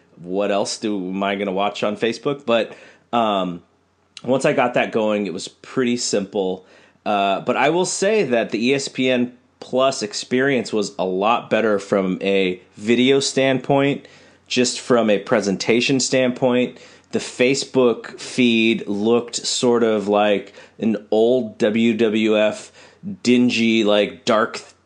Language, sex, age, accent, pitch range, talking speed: English, male, 30-49, American, 100-125 Hz, 140 wpm